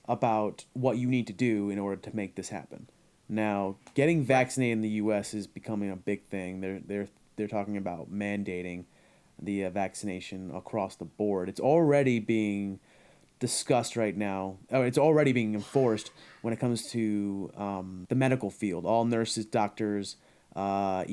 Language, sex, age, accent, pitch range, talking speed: English, male, 30-49, American, 100-125 Hz, 165 wpm